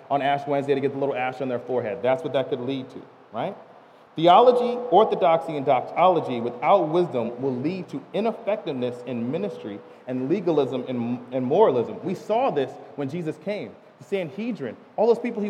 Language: English